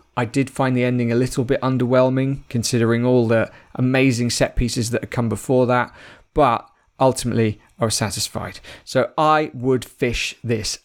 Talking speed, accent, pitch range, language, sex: 165 wpm, British, 115-150 Hz, English, male